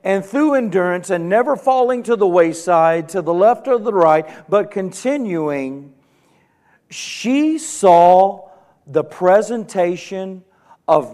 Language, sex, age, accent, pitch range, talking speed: English, male, 50-69, American, 155-195 Hz, 120 wpm